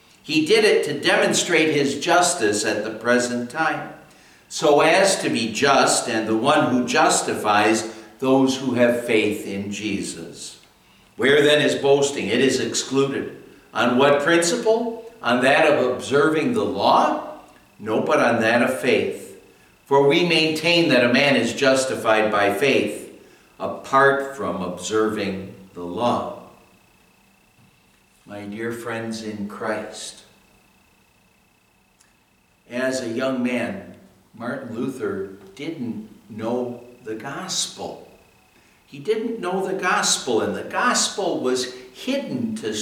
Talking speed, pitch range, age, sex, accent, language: 125 wpm, 110-180 Hz, 60-79, male, American, English